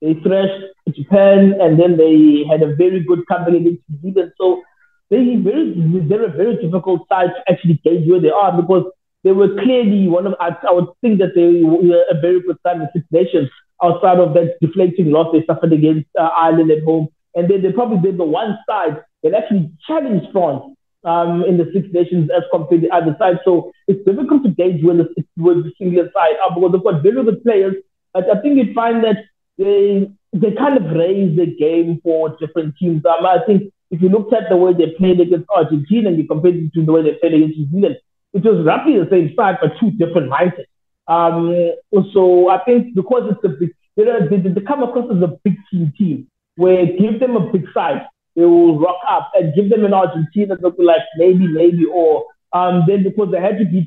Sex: male